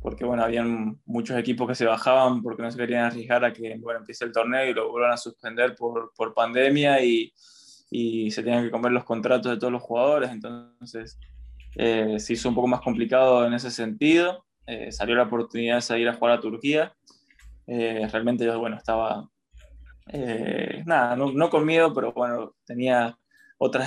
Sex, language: male, Spanish